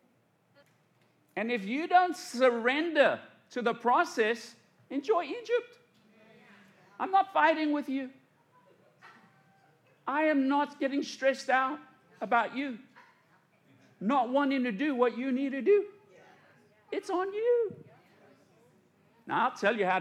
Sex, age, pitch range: male, 50-69, 180-270 Hz